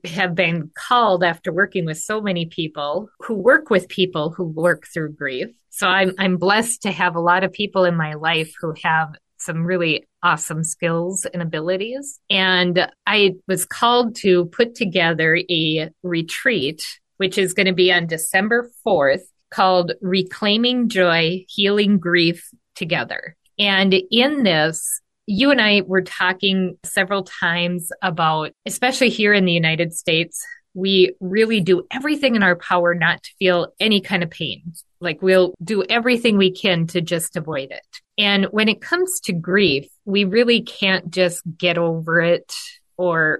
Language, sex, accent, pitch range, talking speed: English, female, American, 170-200 Hz, 160 wpm